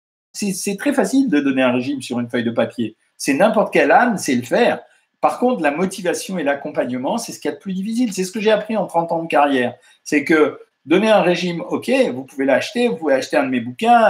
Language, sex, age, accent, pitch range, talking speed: French, male, 50-69, French, 160-230 Hz, 255 wpm